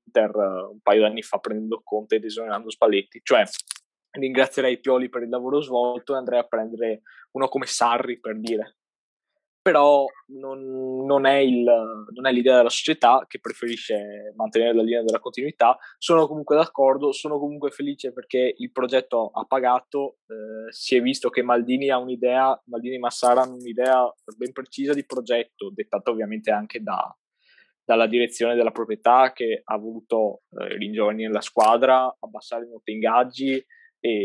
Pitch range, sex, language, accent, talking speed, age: 115-140 Hz, male, Italian, native, 160 wpm, 20-39